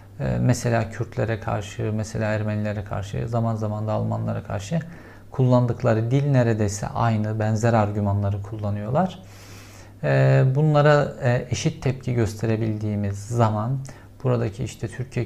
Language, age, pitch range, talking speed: Turkish, 50-69, 105-125 Hz, 100 wpm